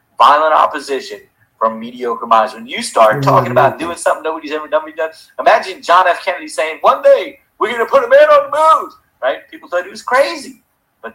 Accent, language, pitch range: American, English, 125-185 Hz